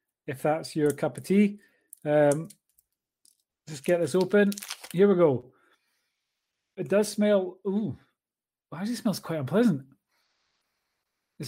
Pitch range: 145-195 Hz